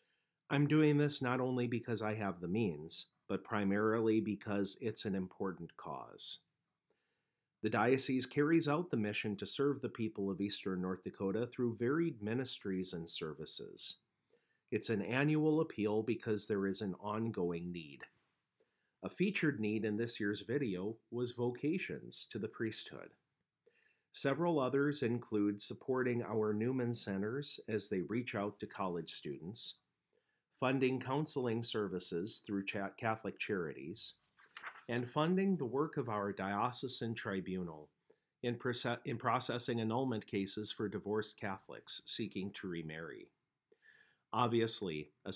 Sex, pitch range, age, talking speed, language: male, 100-130 Hz, 40-59, 130 wpm, English